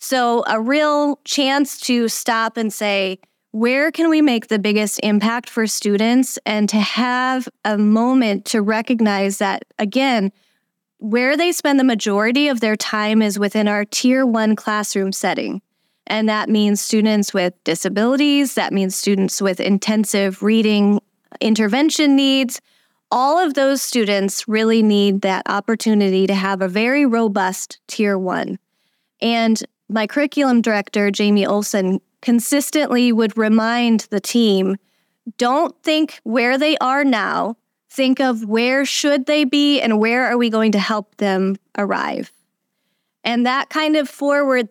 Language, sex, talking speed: English, female, 145 wpm